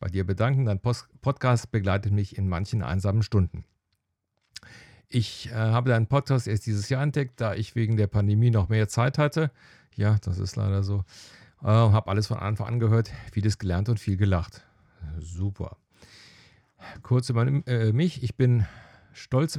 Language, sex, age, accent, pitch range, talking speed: German, male, 50-69, German, 100-120 Hz, 165 wpm